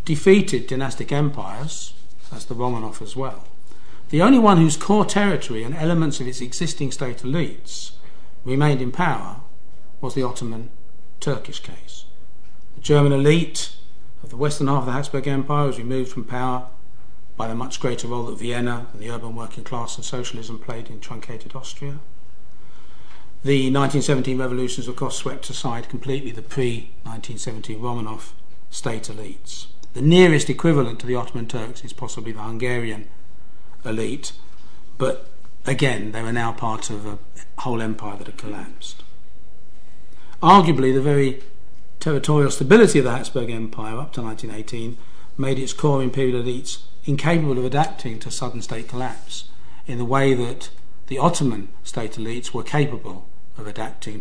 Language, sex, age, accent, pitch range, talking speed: English, male, 40-59, British, 115-140 Hz, 150 wpm